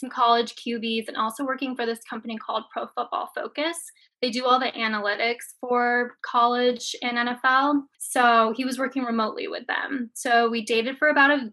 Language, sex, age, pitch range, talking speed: English, female, 10-29, 220-255 Hz, 180 wpm